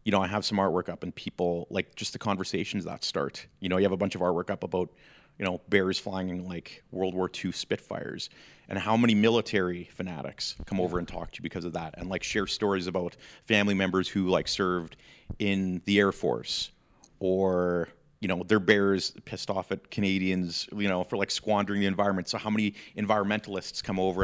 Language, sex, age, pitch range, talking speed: English, male, 30-49, 95-115 Hz, 210 wpm